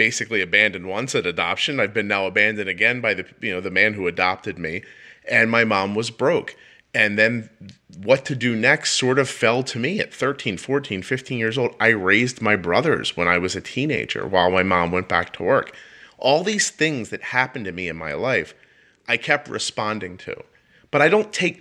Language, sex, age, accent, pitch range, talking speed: English, male, 30-49, American, 110-145 Hz, 210 wpm